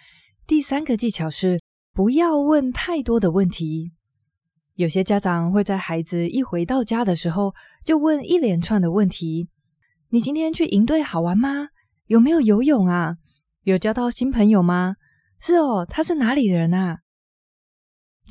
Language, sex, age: Chinese, female, 20-39